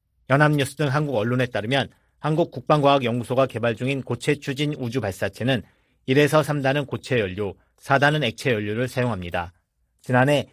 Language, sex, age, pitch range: Korean, male, 40-59, 115-145 Hz